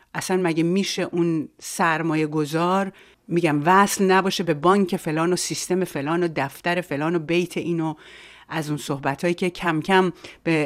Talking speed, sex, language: 160 wpm, female, Persian